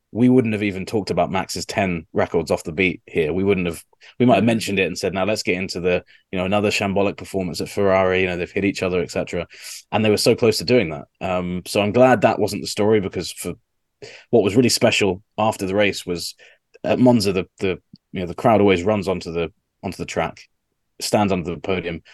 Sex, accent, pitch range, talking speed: male, British, 95-110 Hz, 235 wpm